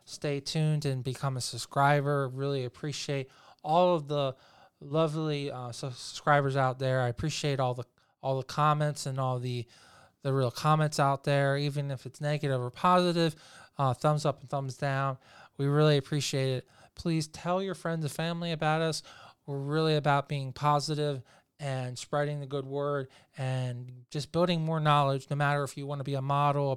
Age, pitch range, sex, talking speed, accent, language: 20-39, 135-150 Hz, male, 180 wpm, American, English